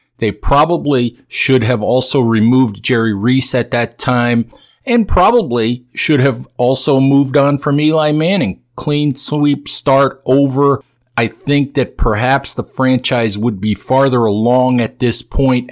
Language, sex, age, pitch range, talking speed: English, male, 50-69, 110-130 Hz, 145 wpm